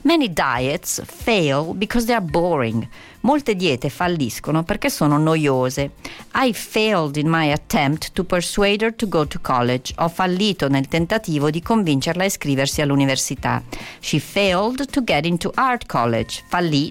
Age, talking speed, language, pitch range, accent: 40-59, 150 wpm, Italian, 140-190 Hz, native